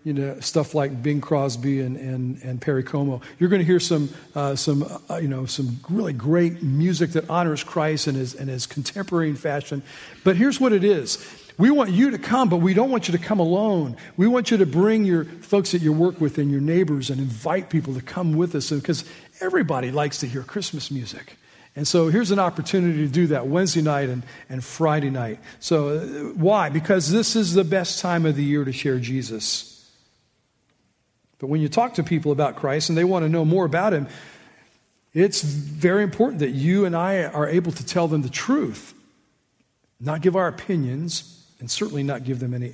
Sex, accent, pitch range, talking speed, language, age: male, American, 140-175 Hz, 205 wpm, English, 50-69